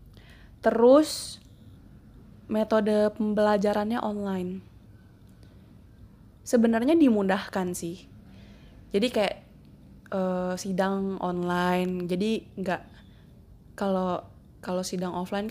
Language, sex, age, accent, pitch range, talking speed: Indonesian, female, 20-39, native, 175-205 Hz, 70 wpm